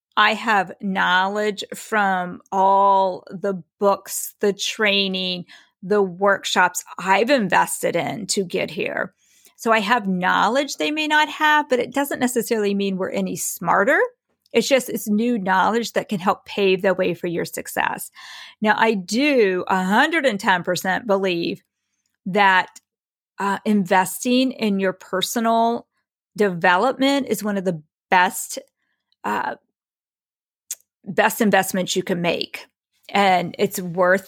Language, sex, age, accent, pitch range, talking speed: English, female, 40-59, American, 190-245 Hz, 130 wpm